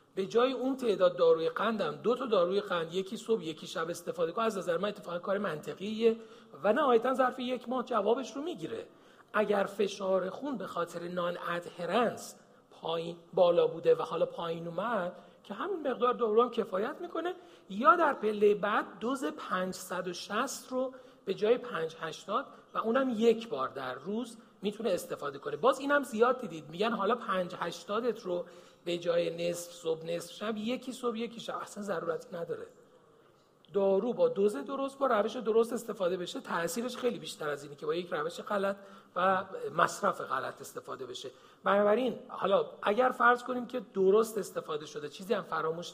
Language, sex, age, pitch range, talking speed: Persian, male, 40-59, 185-255 Hz, 165 wpm